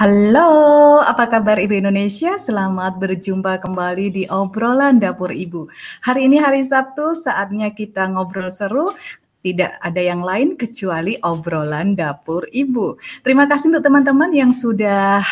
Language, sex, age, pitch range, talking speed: Indonesian, female, 30-49, 190-260 Hz, 135 wpm